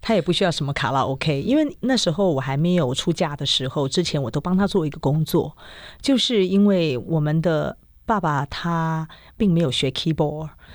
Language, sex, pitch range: Chinese, female, 150-195 Hz